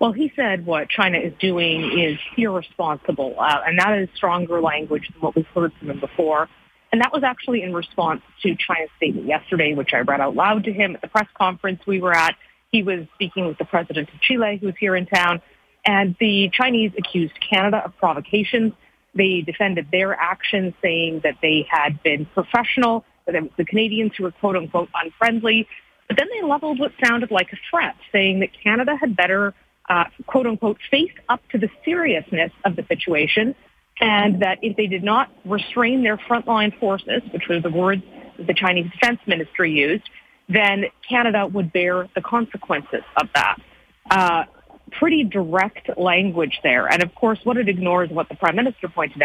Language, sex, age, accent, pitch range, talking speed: English, female, 30-49, American, 170-230 Hz, 185 wpm